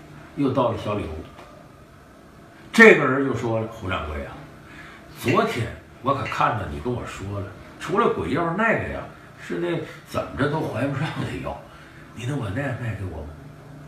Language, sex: Chinese, male